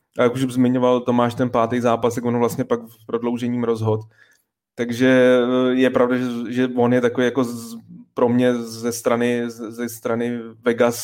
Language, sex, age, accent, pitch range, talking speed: Czech, male, 20-39, native, 120-130 Hz, 175 wpm